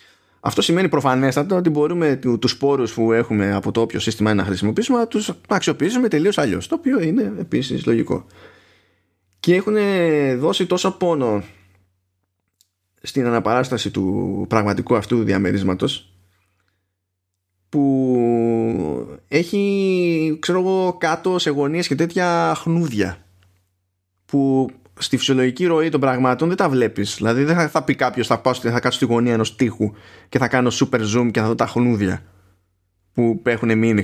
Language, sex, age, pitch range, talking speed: Greek, male, 20-39, 95-150 Hz, 145 wpm